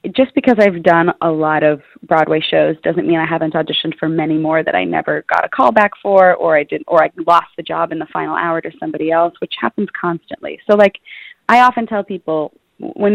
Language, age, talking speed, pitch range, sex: English, 20-39, 230 wpm, 160-220 Hz, female